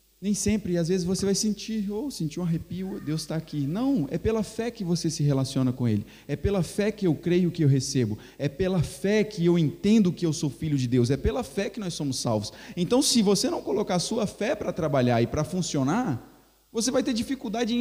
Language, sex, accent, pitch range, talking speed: Portuguese, male, Brazilian, 155-215 Hz, 245 wpm